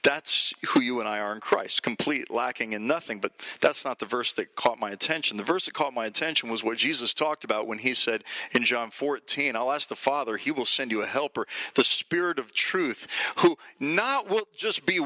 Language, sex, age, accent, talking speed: English, male, 40-59, American, 225 wpm